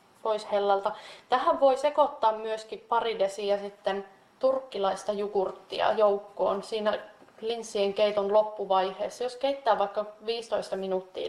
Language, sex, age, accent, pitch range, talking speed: Finnish, female, 20-39, native, 200-230 Hz, 100 wpm